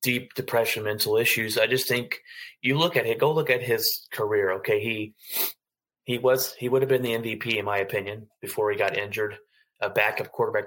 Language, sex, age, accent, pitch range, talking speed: English, male, 20-39, American, 105-150 Hz, 190 wpm